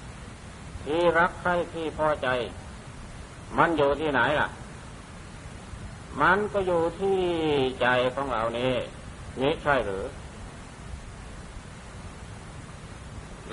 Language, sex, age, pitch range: Thai, male, 60-79, 135-175 Hz